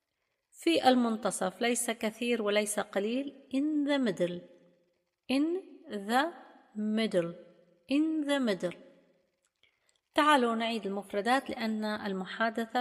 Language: Arabic